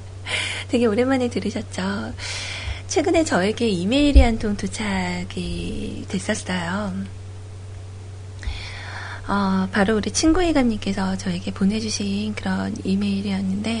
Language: Korean